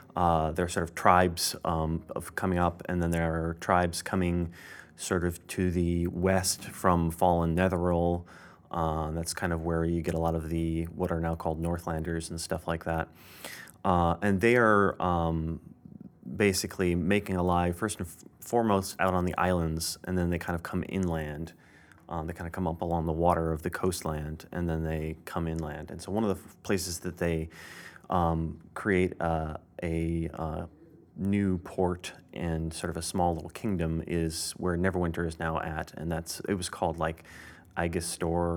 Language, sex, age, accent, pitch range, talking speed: English, male, 30-49, American, 80-90 Hz, 190 wpm